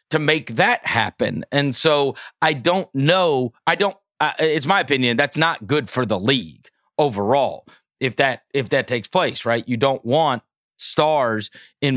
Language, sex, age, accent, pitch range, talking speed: English, male, 30-49, American, 125-170 Hz, 170 wpm